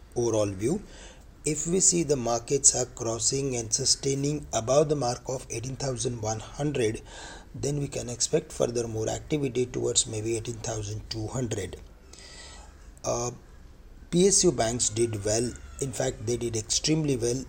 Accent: Indian